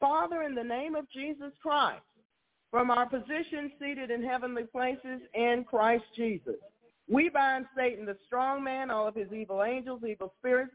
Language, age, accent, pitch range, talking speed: English, 50-69, American, 215-260 Hz, 165 wpm